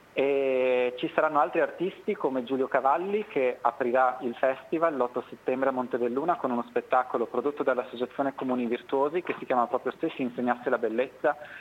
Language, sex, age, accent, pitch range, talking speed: Italian, male, 30-49, native, 125-150 Hz, 160 wpm